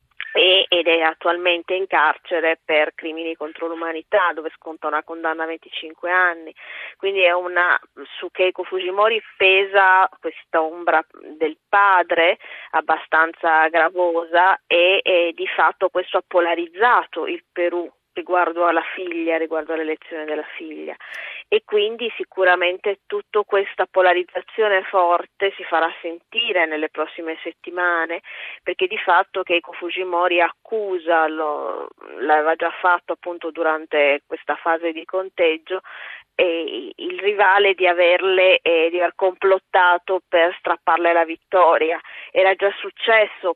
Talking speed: 125 wpm